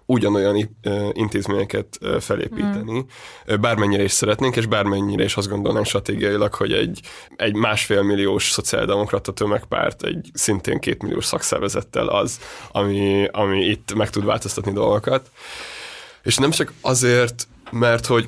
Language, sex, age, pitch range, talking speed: Hungarian, male, 20-39, 100-115 Hz, 120 wpm